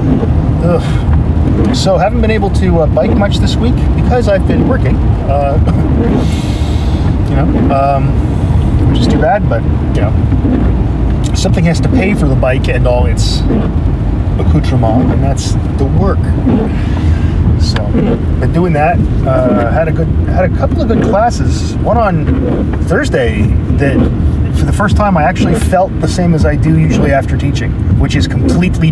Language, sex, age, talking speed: English, male, 30-49, 160 wpm